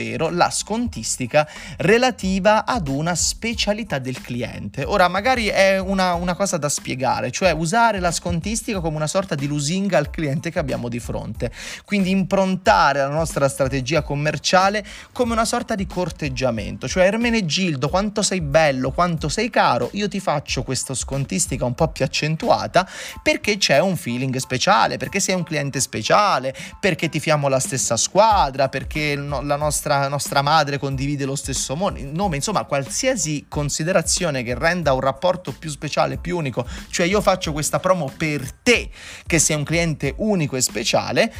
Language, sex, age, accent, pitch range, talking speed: Italian, male, 30-49, native, 135-185 Hz, 160 wpm